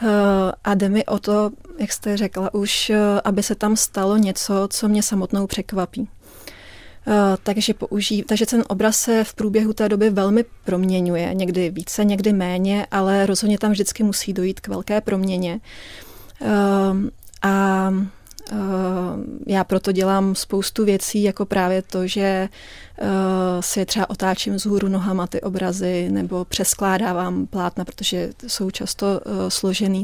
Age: 30-49